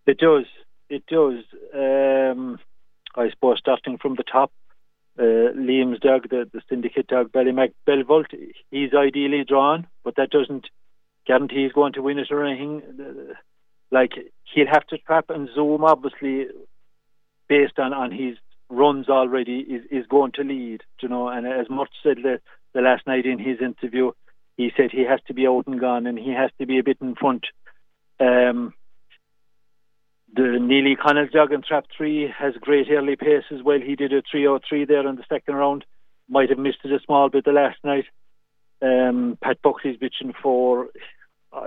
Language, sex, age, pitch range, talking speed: English, male, 50-69, 130-145 Hz, 180 wpm